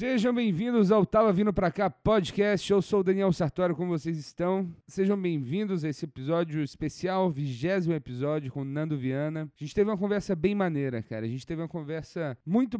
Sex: male